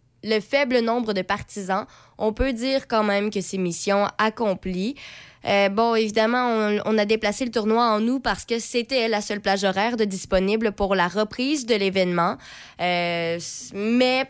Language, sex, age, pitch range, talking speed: French, female, 20-39, 195-235 Hz, 170 wpm